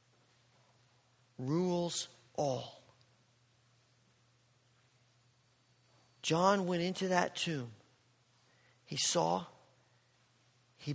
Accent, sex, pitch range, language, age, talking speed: American, male, 120-150 Hz, English, 50-69, 55 wpm